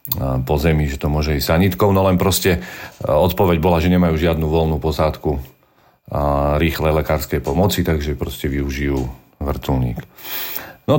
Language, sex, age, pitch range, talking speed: Slovak, male, 40-59, 75-100 Hz, 135 wpm